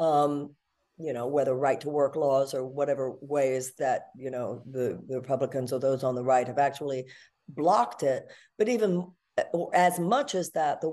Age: 60-79